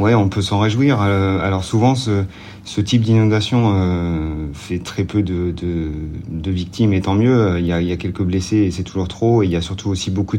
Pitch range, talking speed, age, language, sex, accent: 90-105 Hz, 215 wpm, 40-59, French, male, French